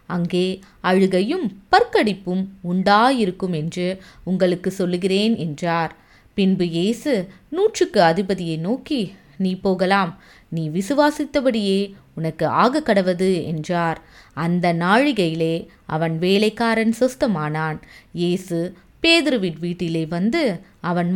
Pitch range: 170-230 Hz